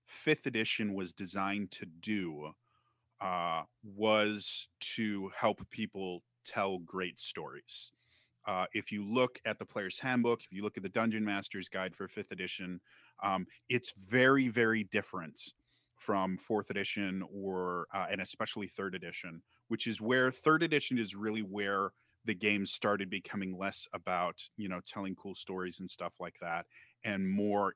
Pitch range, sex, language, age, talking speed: 90-110 Hz, male, English, 30-49, 155 wpm